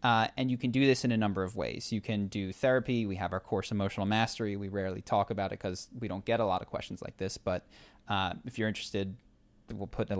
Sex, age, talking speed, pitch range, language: male, 20-39, 265 wpm, 100-125 Hz, English